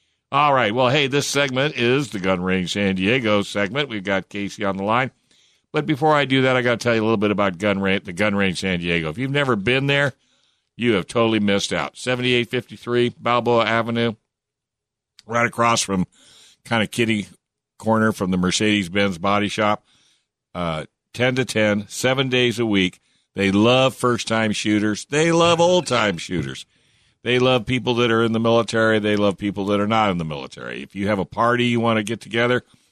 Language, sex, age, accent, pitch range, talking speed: English, male, 60-79, American, 100-125 Hz, 200 wpm